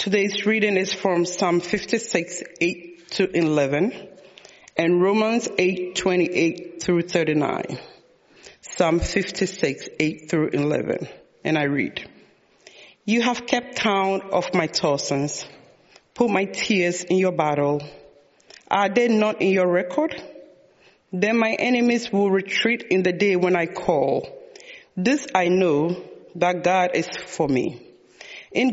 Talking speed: 125 wpm